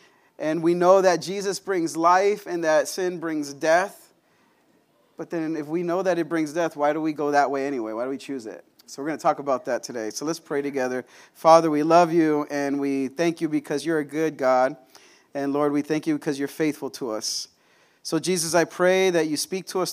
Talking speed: 230 wpm